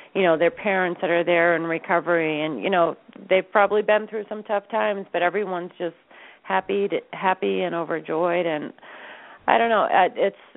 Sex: female